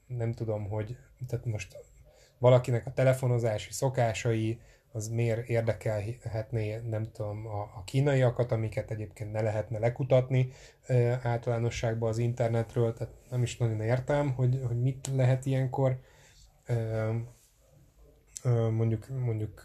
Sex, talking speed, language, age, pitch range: male, 120 wpm, Hungarian, 10-29, 110-125 Hz